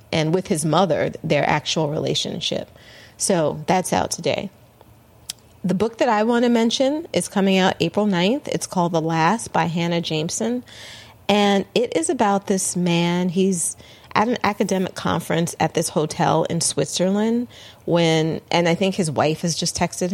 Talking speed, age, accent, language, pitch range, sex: 165 wpm, 30-49, American, English, 145-190 Hz, female